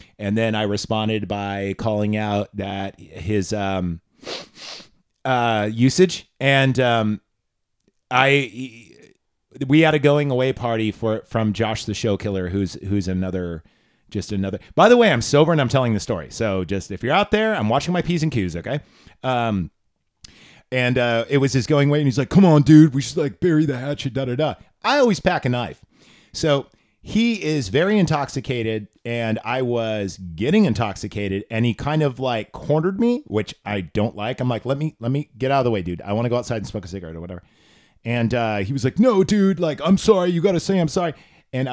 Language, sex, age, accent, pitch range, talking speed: English, male, 30-49, American, 105-145 Hz, 205 wpm